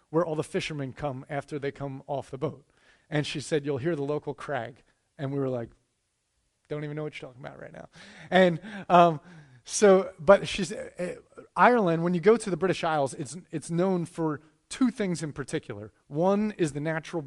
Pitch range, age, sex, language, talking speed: 145-175 Hz, 30-49, male, English, 200 wpm